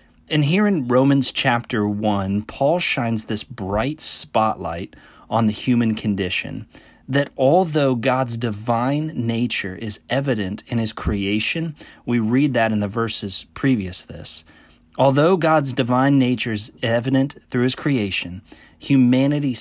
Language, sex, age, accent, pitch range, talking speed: English, male, 30-49, American, 105-140 Hz, 130 wpm